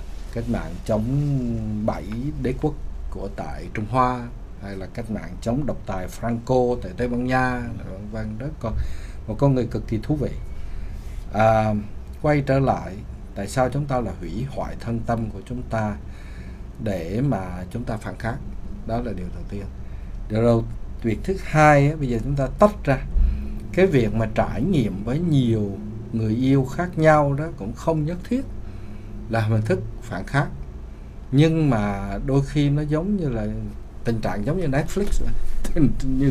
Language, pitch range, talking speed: Vietnamese, 100-140 Hz, 175 wpm